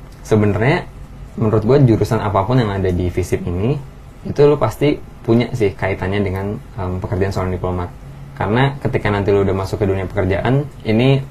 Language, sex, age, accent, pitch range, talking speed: Indonesian, male, 20-39, native, 95-115 Hz, 165 wpm